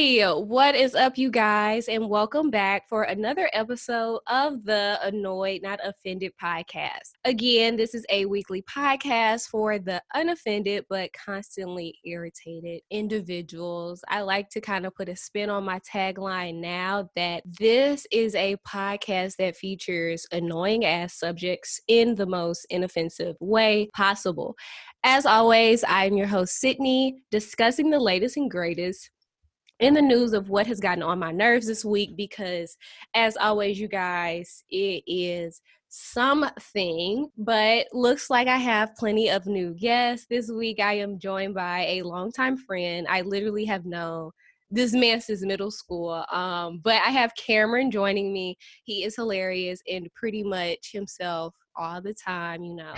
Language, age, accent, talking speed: English, 10-29, American, 155 wpm